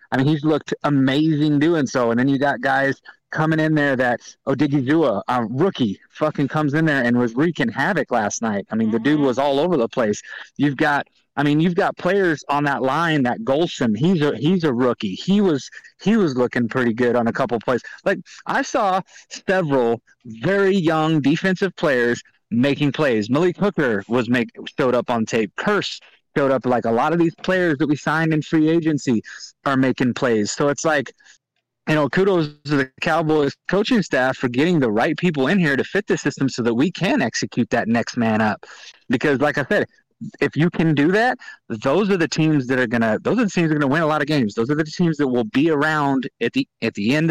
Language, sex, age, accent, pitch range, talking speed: English, male, 30-49, American, 125-160 Hz, 220 wpm